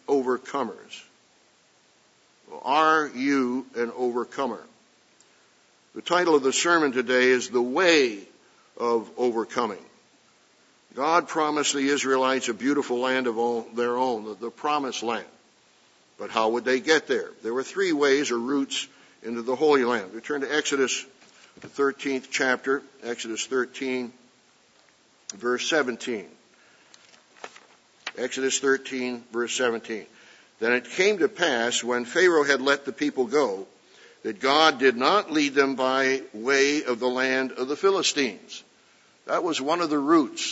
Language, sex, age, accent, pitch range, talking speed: English, male, 60-79, American, 120-140 Hz, 140 wpm